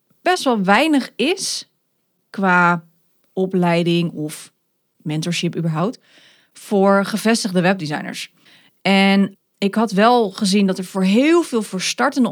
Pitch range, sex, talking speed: 180-230 Hz, female, 115 wpm